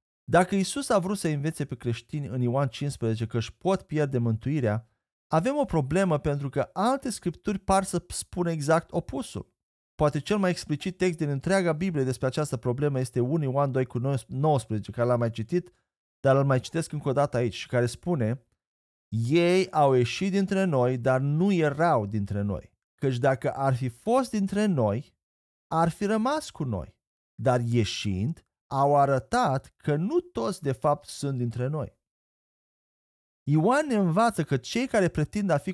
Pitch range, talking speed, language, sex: 125-175 Hz, 175 wpm, Romanian, male